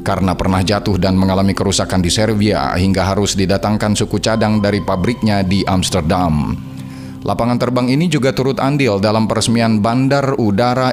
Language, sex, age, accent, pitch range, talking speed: Indonesian, male, 30-49, native, 95-110 Hz, 150 wpm